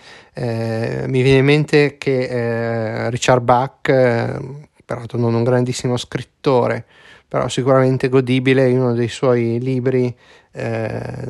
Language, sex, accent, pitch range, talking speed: Italian, male, native, 110-130 Hz, 125 wpm